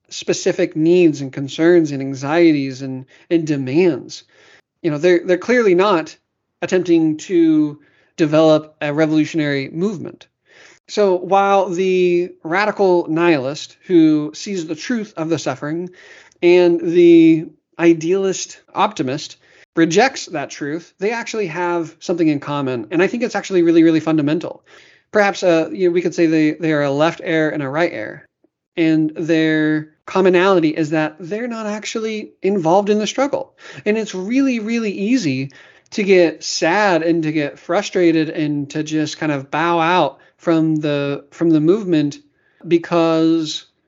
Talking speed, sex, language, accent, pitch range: 150 wpm, male, English, American, 155-190 Hz